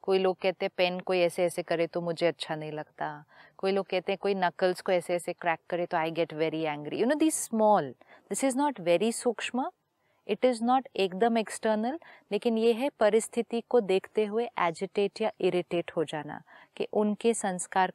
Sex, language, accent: female, Hindi, native